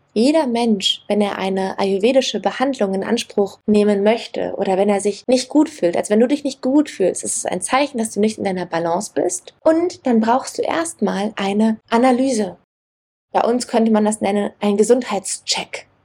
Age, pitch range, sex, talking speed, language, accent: 20-39, 195-250 Hz, female, 190 wpm, German, German